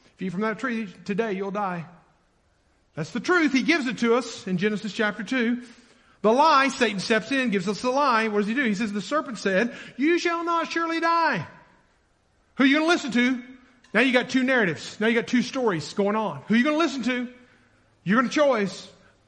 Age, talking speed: 50-69, 225 wpm